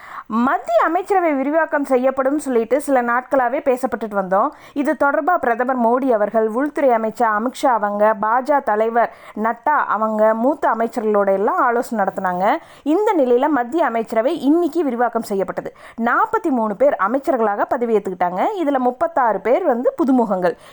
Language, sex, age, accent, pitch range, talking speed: Tamil, female, 20-39, native, 220-290 Hz, 125 wpm